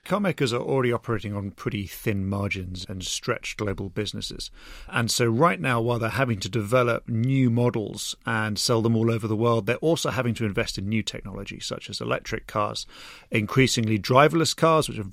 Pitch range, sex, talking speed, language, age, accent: 105-140 Hz, male, 190 wpm, English, 40-59, British